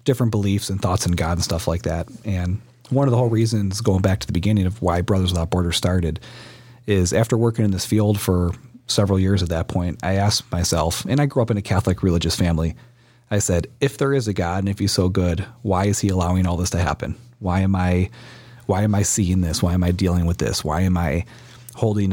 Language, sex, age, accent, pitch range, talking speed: English, male, 30-49, American, 90-115 Hz, 240 wpm